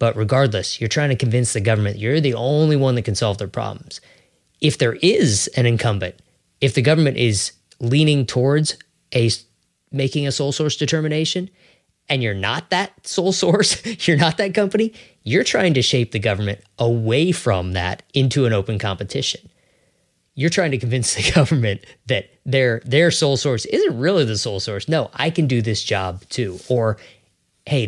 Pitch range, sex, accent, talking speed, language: 110-145 Hz, male, American, 175 wpm, English